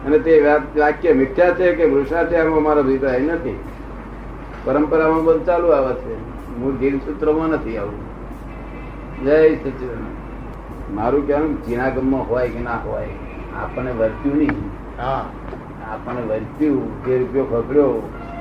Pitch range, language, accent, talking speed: 120-145 Hz, Gujarati, native, 45 wpm